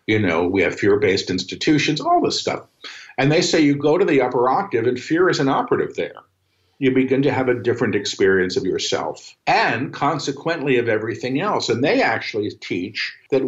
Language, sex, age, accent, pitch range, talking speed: English, male, 50-69, American, 115-150 Hz, 190 wpm